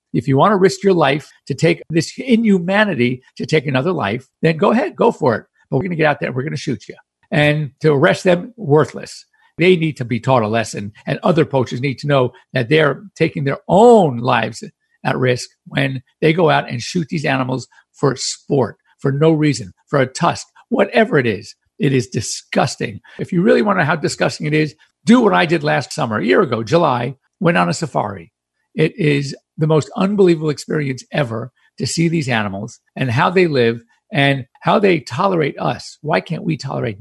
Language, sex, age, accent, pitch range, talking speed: English, male, 50-69, American, 130-180 Hz, 210 wpm